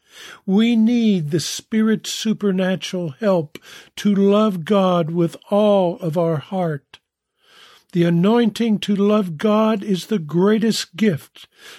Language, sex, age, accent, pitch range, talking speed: English, male, 50-69, American, 155-210 Hz, 115 wpm